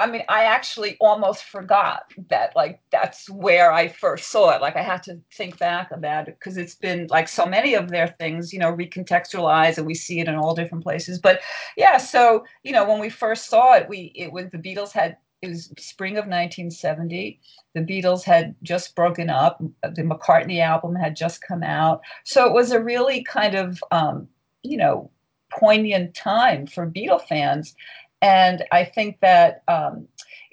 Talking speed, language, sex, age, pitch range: 190 wpm, English, female, 40-59, 165-205 Hz